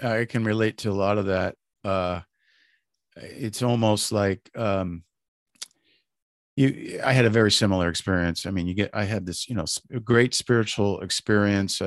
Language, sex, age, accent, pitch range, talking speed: English, male, 50-69, American, 95-120 Hz, 165 wpm